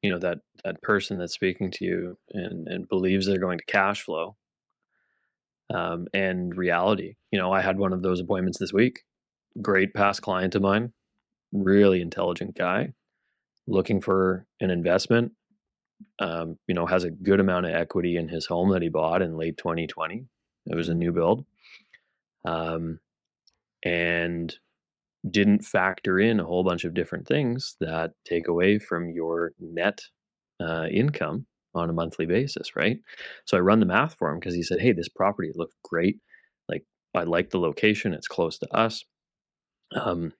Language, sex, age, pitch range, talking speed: English, male, 20-39, 85-100 Hz, 170 wpm